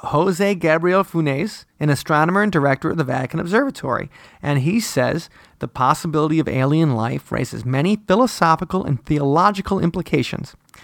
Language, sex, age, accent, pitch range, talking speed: English, male, 30-49, American, 140-180 Hz, 140 wpm